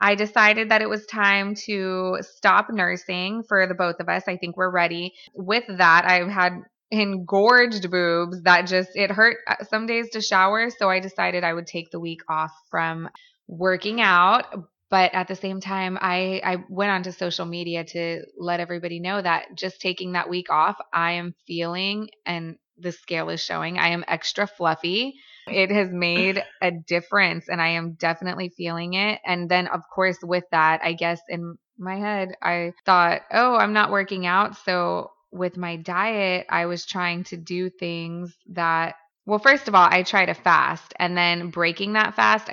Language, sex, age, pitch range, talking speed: English, female, 20-39, 175-200 Hz, 185 wpm